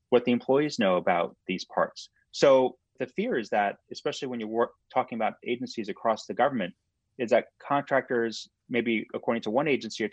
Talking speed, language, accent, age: 180 wpm, English, American, 30-49